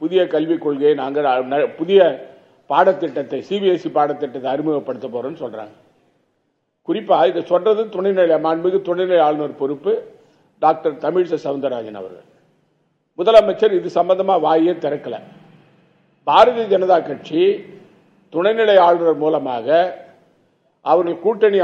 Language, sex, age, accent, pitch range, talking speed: Tamil, male, 50-69, native, 155-215 Hz, 95 wpm